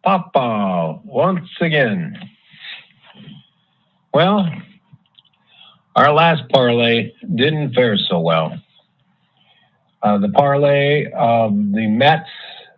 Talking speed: 80 wpm